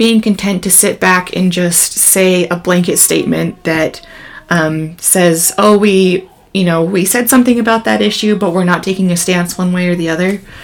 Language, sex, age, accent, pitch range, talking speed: English, female, 20-39, American, 170-205 Hz, 195 wpm